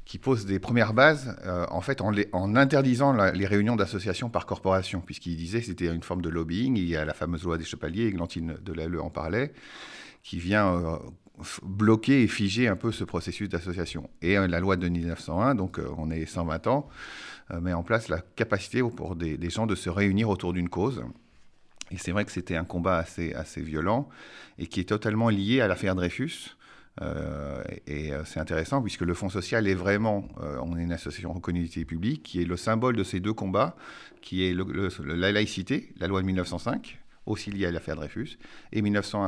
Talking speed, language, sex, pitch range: 215 wpm, Italian, male, 85-105 Hz